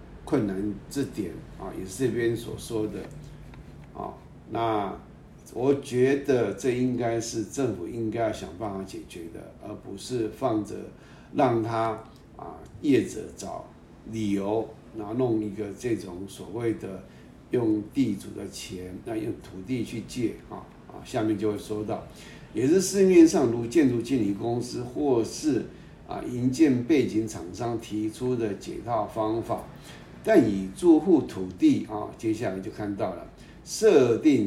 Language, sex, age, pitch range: Chinese, male, 50-69, 105-125 Hz